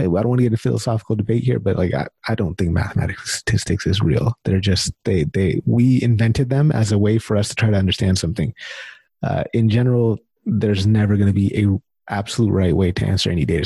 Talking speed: 230 wpm